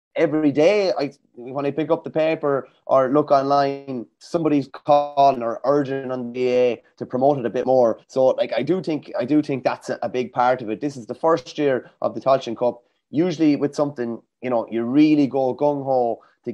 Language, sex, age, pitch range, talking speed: English, male, 20-39, 120-140 Hz, 210 wpm